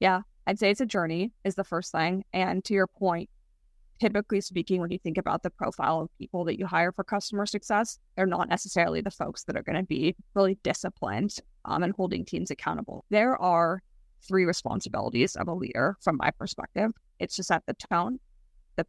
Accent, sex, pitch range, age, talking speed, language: American, female, 175-205 Hz, 20-39, 200 wpm, English